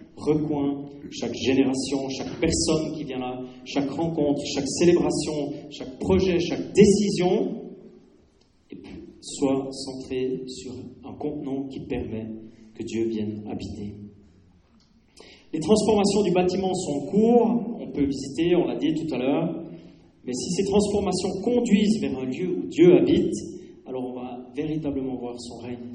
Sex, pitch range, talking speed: male, 125-165 Hz, 140 wpm